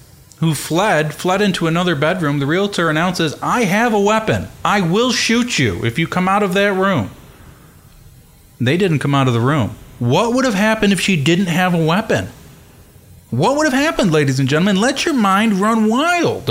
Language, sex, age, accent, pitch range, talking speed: English, male, 40-59, American, 140-215 Hz, 195 wpm